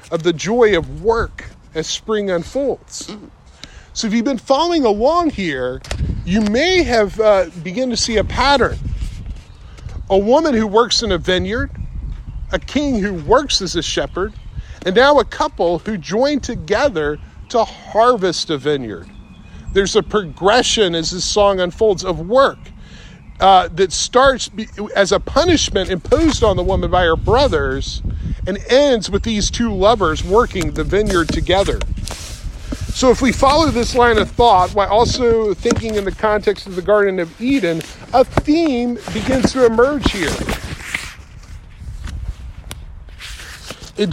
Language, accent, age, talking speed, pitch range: English, American, 40-59, 145 wpm, 185-250 Hz